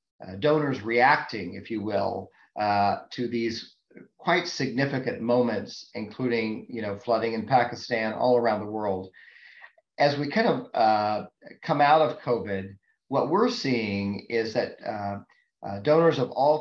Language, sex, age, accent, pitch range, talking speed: English, male, 40-59, American, 105-135 Hz, 150 wpm